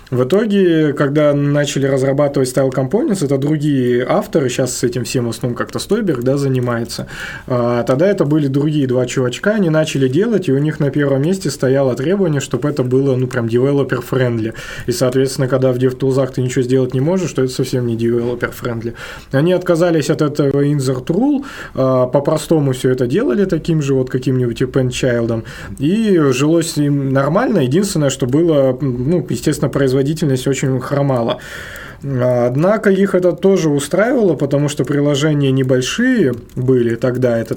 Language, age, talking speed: Russian, 20-39, 165 wpm